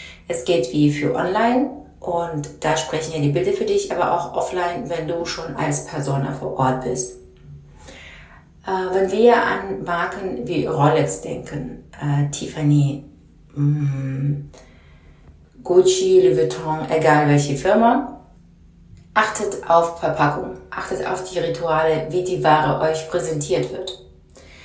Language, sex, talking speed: German, female, 130 wpm